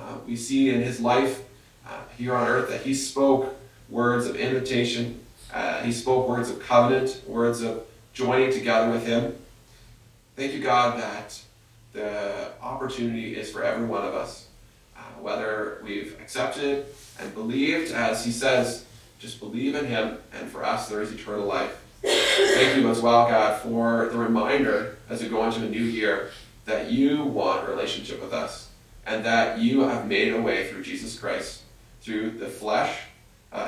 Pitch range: 110-125 Hz